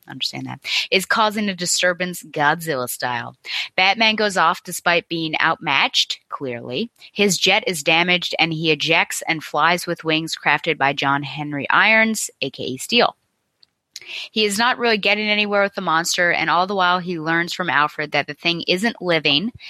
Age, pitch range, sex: 30-49, 155-195 Hz, female